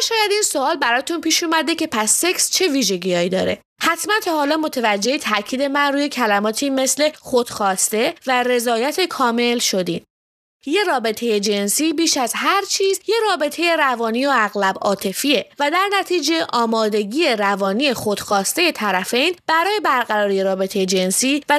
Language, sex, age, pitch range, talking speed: English, female, 20-39, 215-325 Hz, 140 wpm